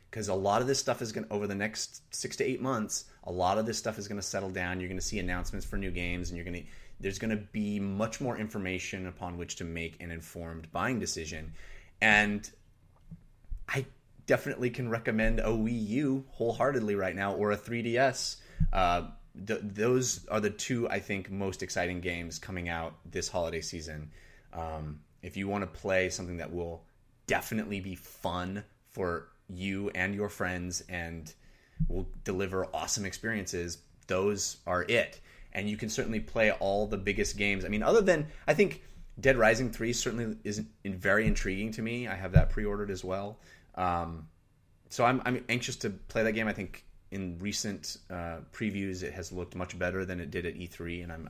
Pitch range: 90-110 Hz